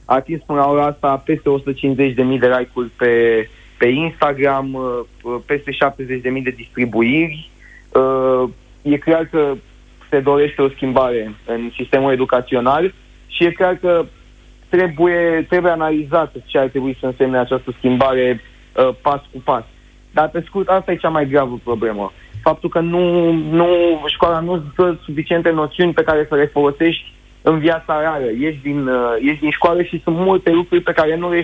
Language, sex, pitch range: Romanian, male, 130-165 Hz